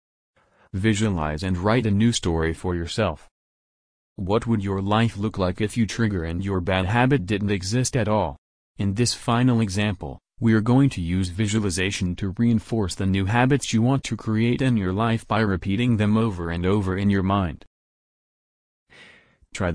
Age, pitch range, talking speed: 30-49, 90-115 Hz, 175 wpm